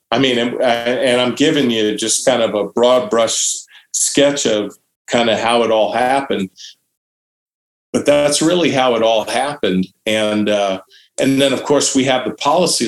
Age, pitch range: 40-59, 115-145 Hz